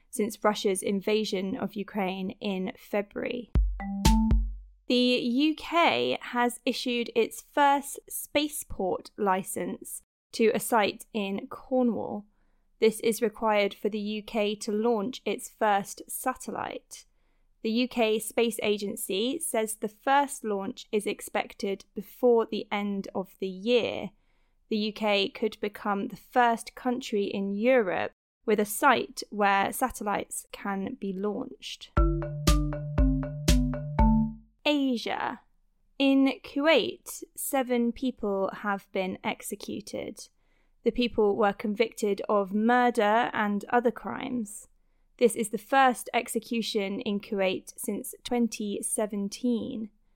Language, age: English, 20-39